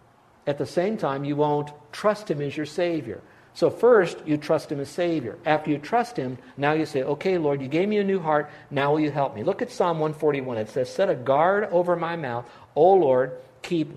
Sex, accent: male, American